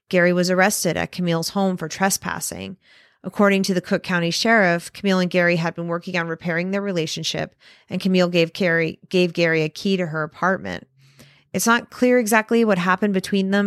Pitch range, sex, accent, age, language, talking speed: 165-195 Hz, female, American, 30-49, English, 190 wpm